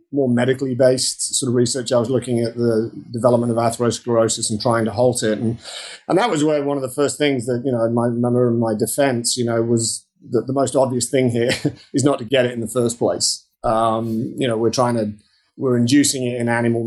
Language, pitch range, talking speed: English, 115-125 Hz, 235 wpm